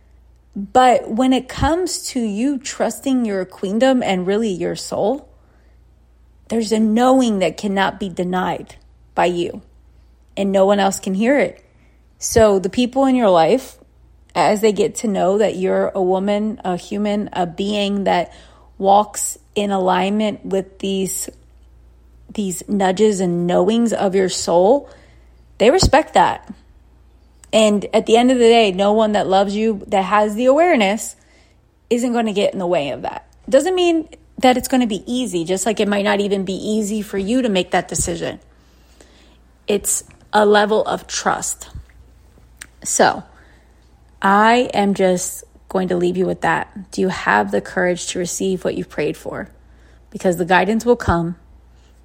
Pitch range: 170-215 Hz